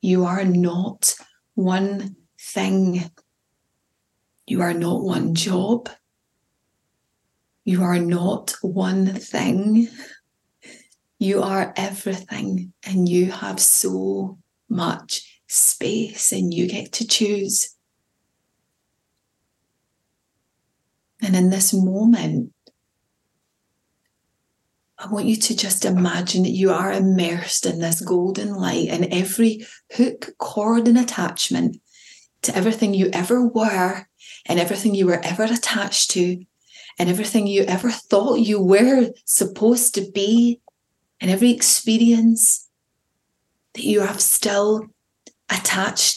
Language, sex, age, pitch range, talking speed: English, female, 30-49, 185-220 Hz, 110 wpm